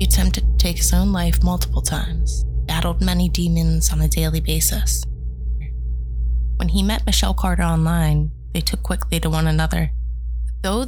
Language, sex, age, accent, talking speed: English, female, 20-39, American, 160 wpm